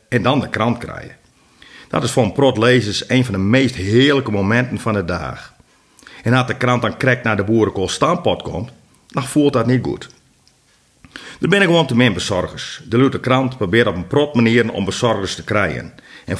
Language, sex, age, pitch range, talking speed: Dutch, male, 50-69, 100-125 Hz, 200 wpm